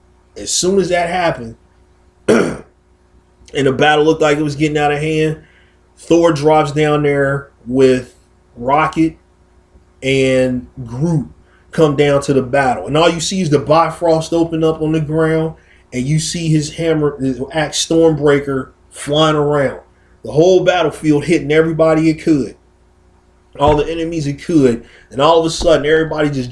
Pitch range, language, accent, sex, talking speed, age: 135-165 Hz, English, American, male, 160 wpm, 30-49